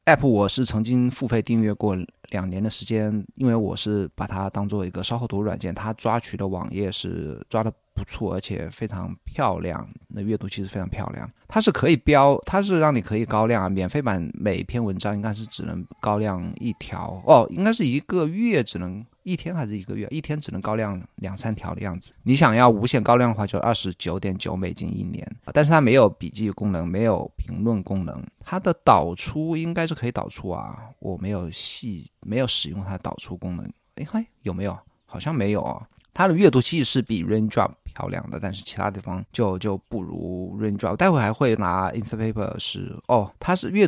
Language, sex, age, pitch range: Chinese, male, 20-39, 95-120 Hz